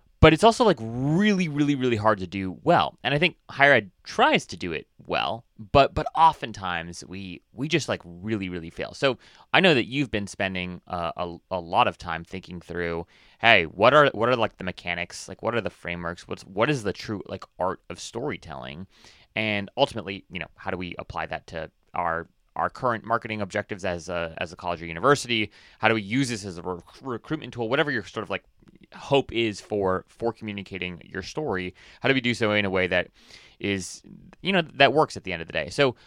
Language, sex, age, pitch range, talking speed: English, male, 30-49, 90-115 Hz, 220 wpm